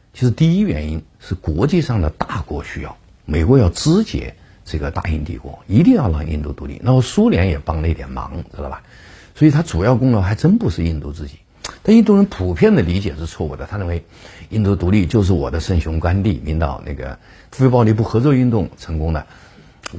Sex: male